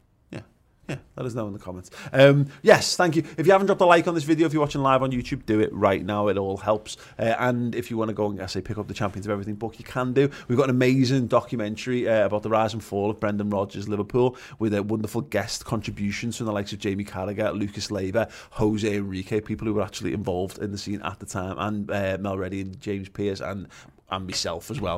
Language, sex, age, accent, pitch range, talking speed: English, male, 30-49, British, 100-120 Hz, 255 wpm